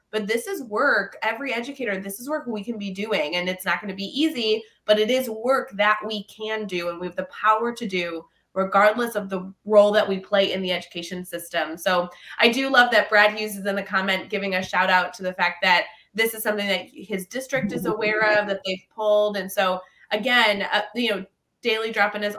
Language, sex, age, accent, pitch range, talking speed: English, female, 20-39, American, 185-220 Hz, 230 wpm